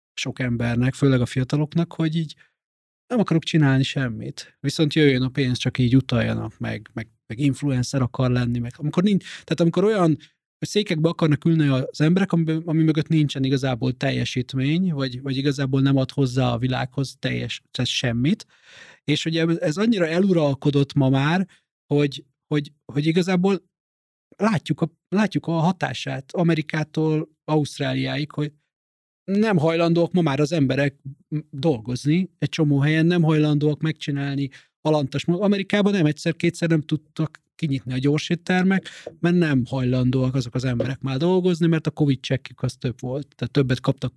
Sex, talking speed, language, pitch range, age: male, 150 wpm, Hungarian, 135-165 Hz, 30-49